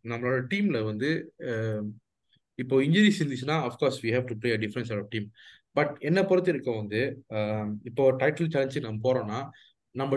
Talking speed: 110 wpm